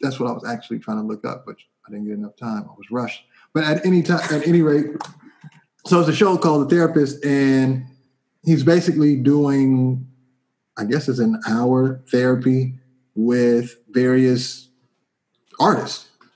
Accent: American